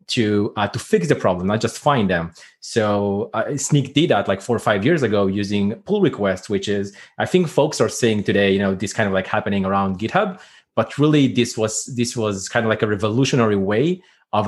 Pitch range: 105-135 Hz